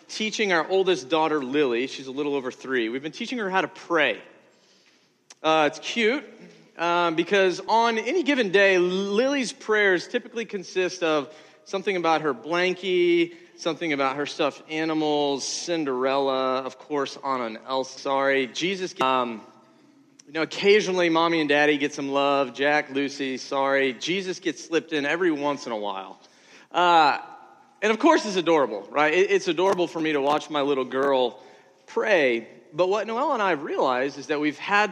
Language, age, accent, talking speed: English, 40-59, American, 170 wpm